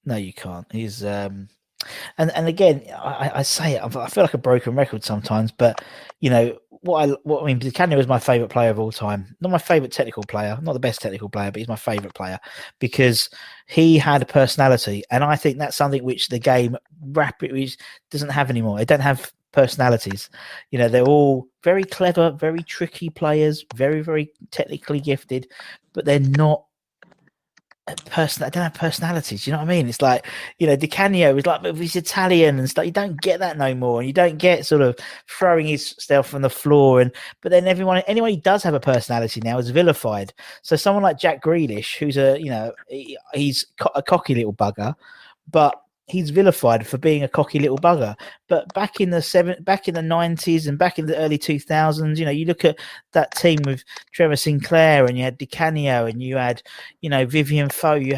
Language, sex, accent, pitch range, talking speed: English, male, British, 125-165 Hz, 210 wpm